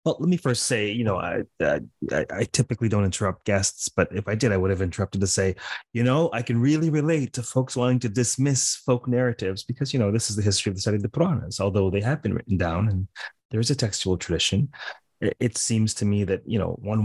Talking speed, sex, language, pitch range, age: 245 wpm, male, English, 95-120 Hz, 30-49